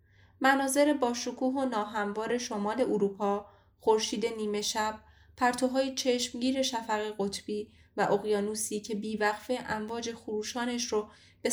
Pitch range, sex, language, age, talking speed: 200-250 Hz, female, Persian, 10-29, 110 wpm